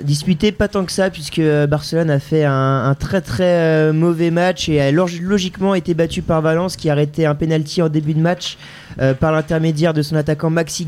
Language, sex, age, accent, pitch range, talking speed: French, male, 20-39, French, 150-180 Hz, 220 wpm